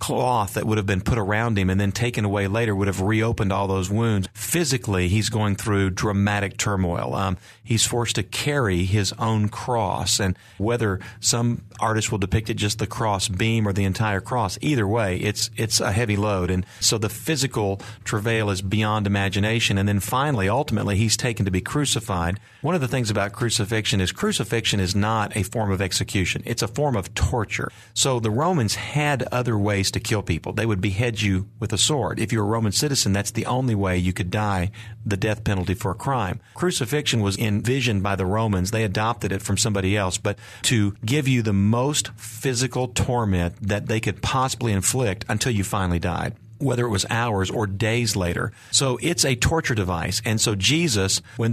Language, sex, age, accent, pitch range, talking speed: English, male, 40-59, American, 100-120 Hz, 200 wpm